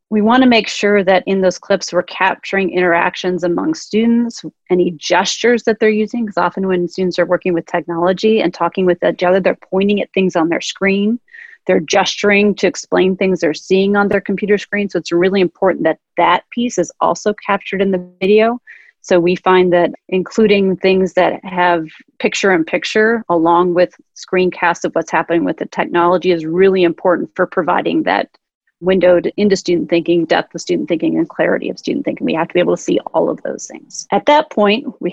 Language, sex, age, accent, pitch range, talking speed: English, female, 30-49, American, 175-200 Hz, 195 wpm